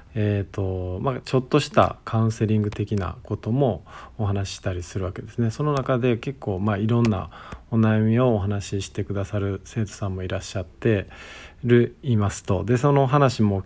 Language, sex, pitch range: Japanese, male, 100-120 Hz